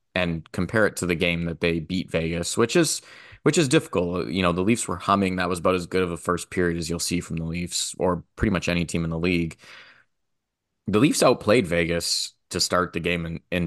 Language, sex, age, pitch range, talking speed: English, male, 20-39, 85-95 Hz, 235 wpm